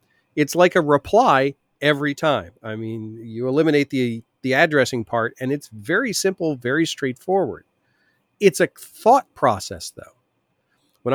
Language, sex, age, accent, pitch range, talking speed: English, male, 40-59, American, 120-170 Hz, 140 wpm